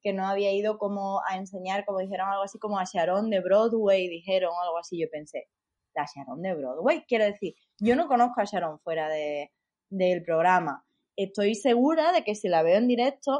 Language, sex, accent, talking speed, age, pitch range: Spanish, female, Spanish, 200 wpm, 20-39, 185-245 Hz